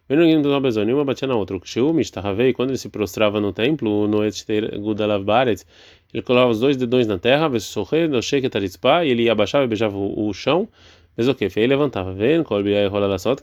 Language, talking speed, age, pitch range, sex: Portuguese, 105 wpm, 20-39, 105-140 Hz, male